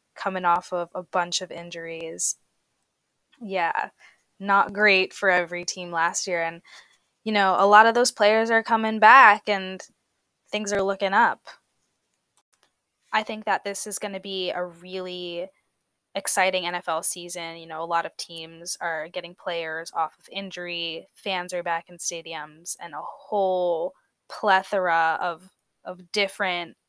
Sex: female